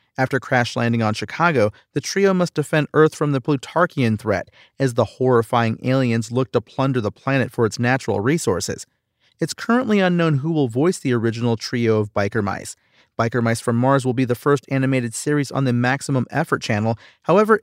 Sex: male